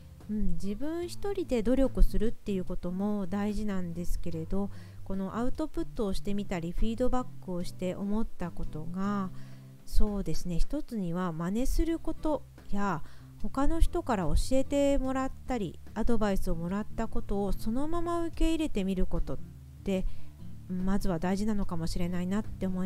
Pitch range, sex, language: 180-250 Hz, female, Japanese